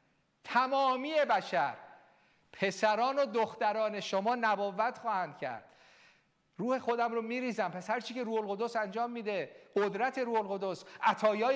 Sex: male